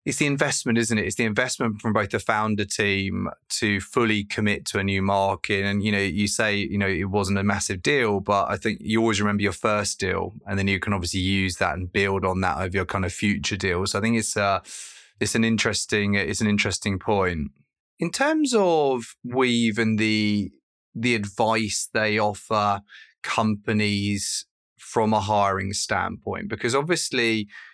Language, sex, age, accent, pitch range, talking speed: English, male, 20-39, British, 100-115 Hz, 190 wpm